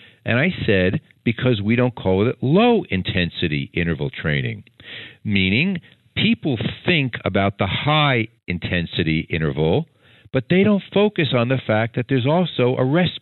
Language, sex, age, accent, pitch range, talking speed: English, male, 50-69, American, 100-135 Hz, 145 wpm